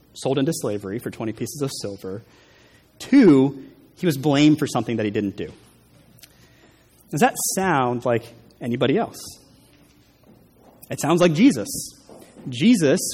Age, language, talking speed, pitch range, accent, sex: 30-49, English, 130 wpm, 120-160 Hz, American, male